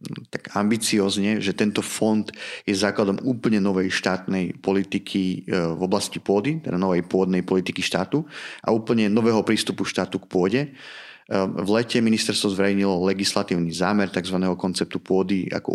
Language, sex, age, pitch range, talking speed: Slovak, male, 30-49, 90-105 Hz, 135 wpm